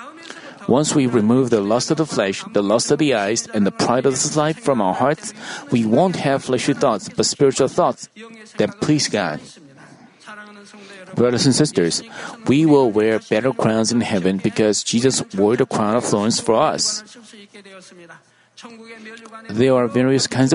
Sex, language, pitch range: male, Korean, 125-170 Hz